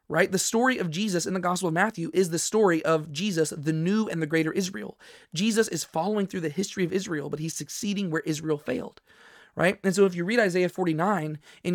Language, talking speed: English, 225 wpm